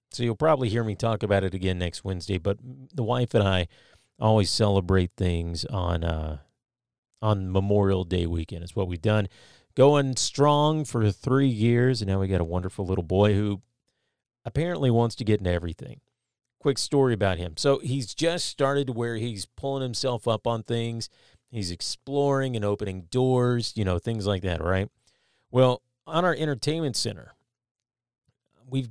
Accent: American